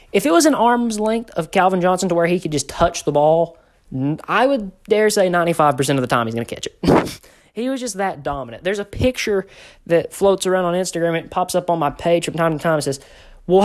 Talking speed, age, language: 245 wpm, 20-39, English